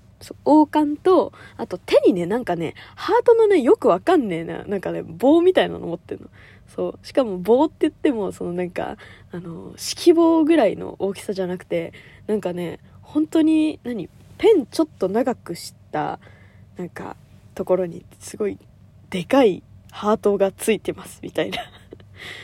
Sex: female